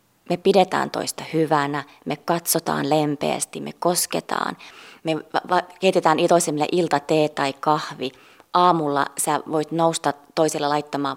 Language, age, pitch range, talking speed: Finnish, 20-39, 155-230 Hz, 120 wpm